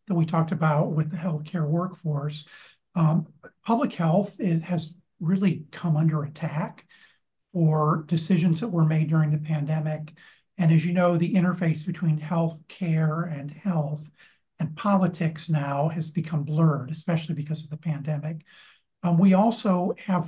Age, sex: 50-69, male